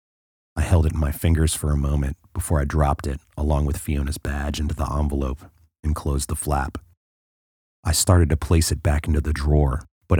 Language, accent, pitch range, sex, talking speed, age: English, American, 70-85 Hz, male, 200 wpm, 30-49